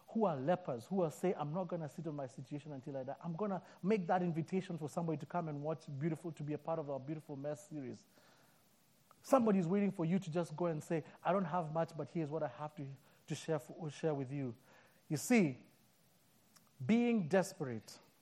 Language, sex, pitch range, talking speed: English, male, 145-190 Hz, 230 wpm